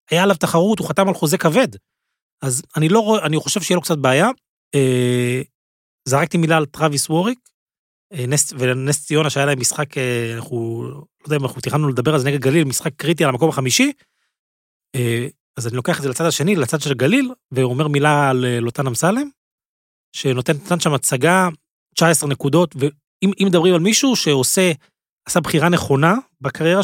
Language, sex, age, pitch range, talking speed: Hebrew, male, 30-49, 130-170 Hz, 165 wpm